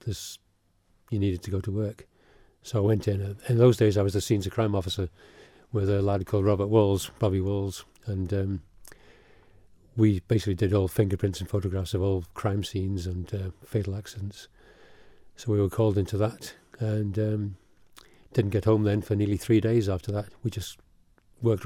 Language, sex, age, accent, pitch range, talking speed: English, male, 40-59, British, 100-110 Hz, 185 wpm